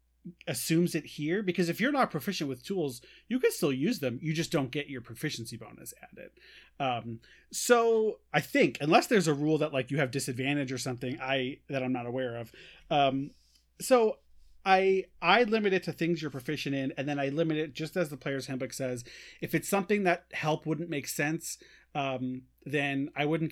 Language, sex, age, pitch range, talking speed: English, male, 30-49, 130-165 Hz, 200 wpm